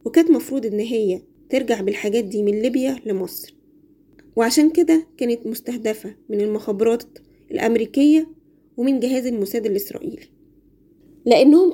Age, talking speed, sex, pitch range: 20-39, 115 wpm, female, 220-300 Hz